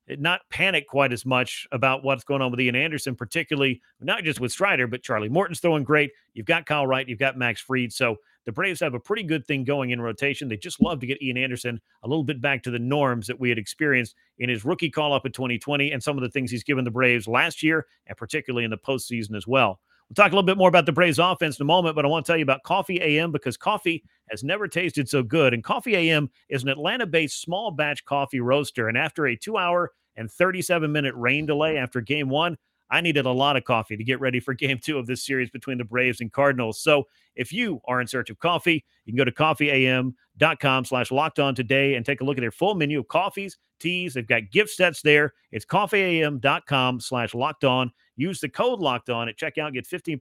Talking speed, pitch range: 235 wpm, 125-160 Hz